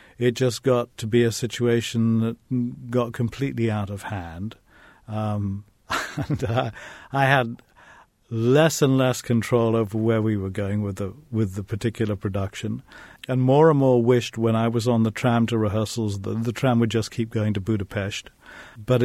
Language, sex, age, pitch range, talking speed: English, male, 50-69, 110-125 Hz, 175 wpm